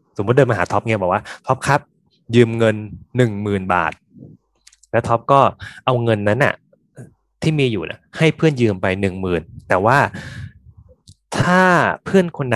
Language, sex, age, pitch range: Thai, male, 20-39, 100-135 Hz